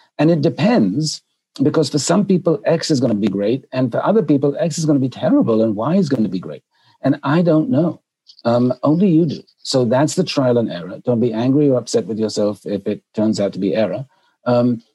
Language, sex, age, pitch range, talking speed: English, male, 60-79, 115-145 Hz, 235 wpm